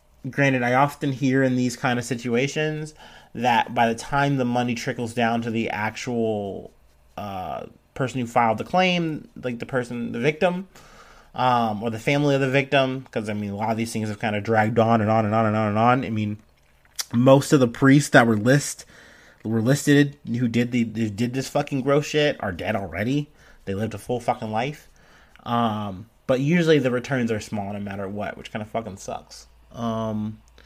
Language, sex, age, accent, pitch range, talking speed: English, male, 30-49, American, 110-135 Hz, 200 wpm